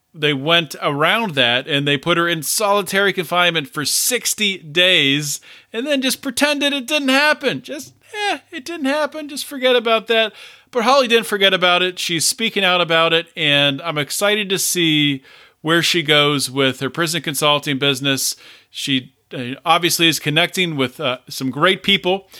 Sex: male